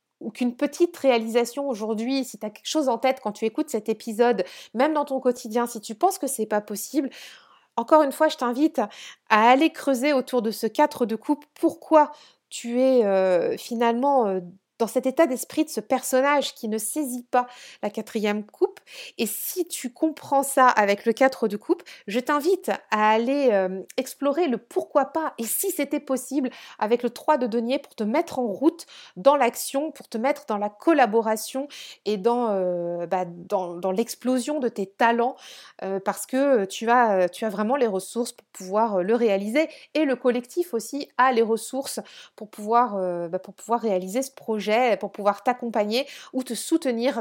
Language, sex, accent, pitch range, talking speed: French, female, French, 210-280 Hz, 185 wpm